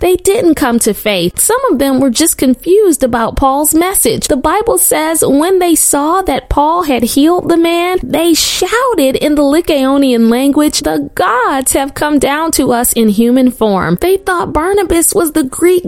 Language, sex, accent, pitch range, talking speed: English, female, American, 260-345 Hz, 180 wpm